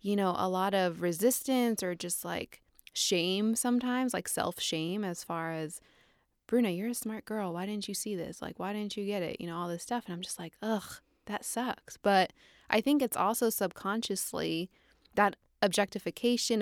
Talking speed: 190 wpm